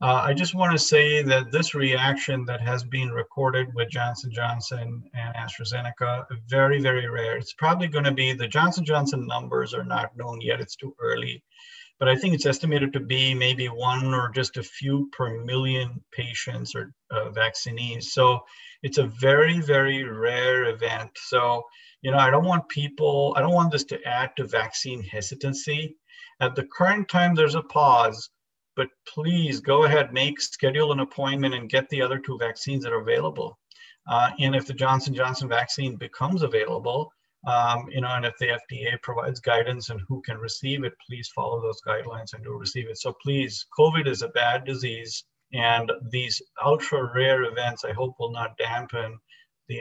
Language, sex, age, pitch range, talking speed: English, male, 50-69, 120-150 Hz, 180 wpm